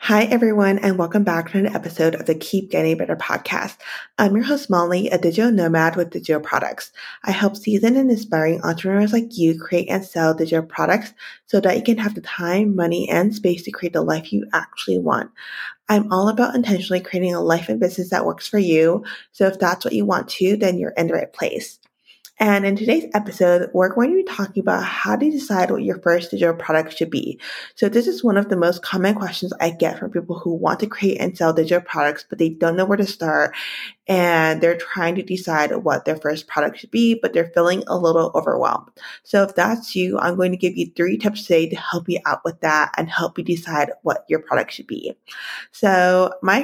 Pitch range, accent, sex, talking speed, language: 170-205 Hz, American, female, 225 wpm, English